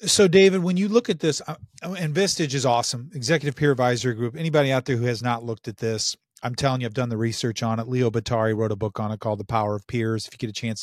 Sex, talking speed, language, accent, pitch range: male, 275 wpm, English, American, 115-130 Hz